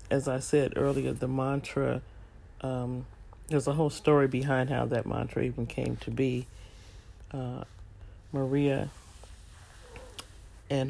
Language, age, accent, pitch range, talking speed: English, 40-59, American, 110-140 Hz, 120 wpm